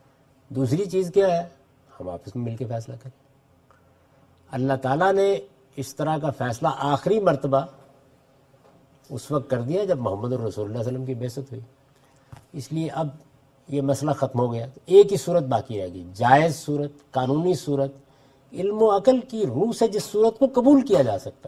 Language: Urdu